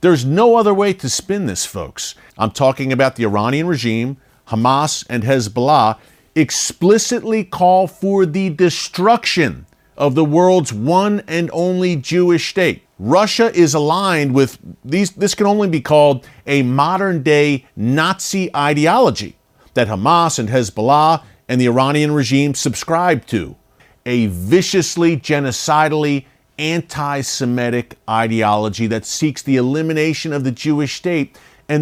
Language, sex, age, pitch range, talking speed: English, male, 50-69, 125-170 Hz, 130 wpm